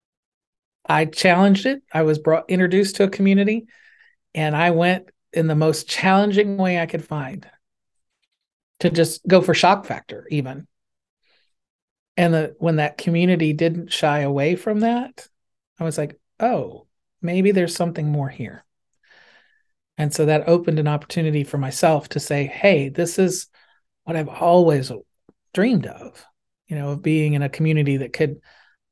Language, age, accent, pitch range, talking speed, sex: English, 40-59, American, 145-175 Hz, 155 wpm, male